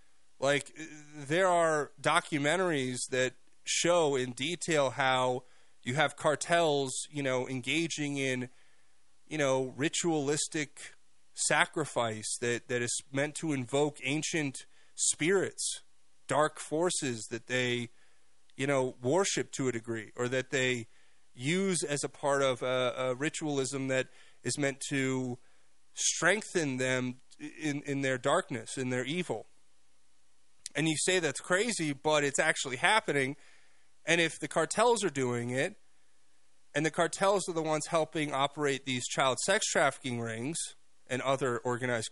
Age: 30-49